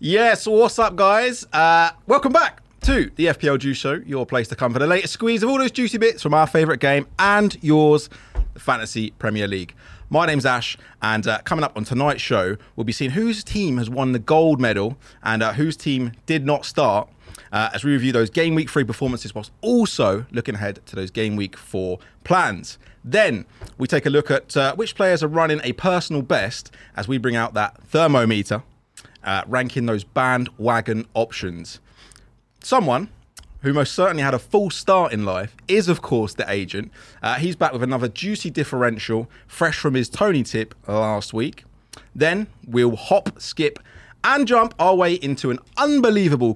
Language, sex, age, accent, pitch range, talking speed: English, male, 30-49, British, 110-160 Hz, 190 wpm